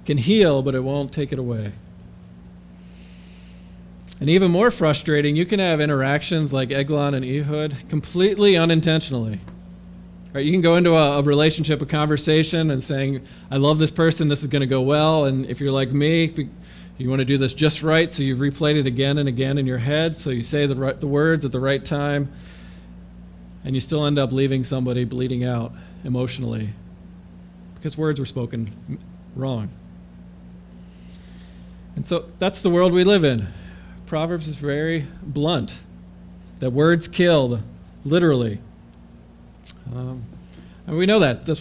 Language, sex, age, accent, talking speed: English, male, 40-59, American, 160 wpm